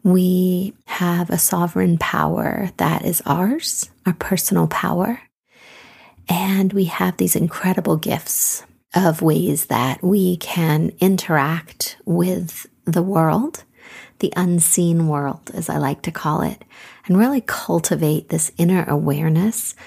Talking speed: 125 wpm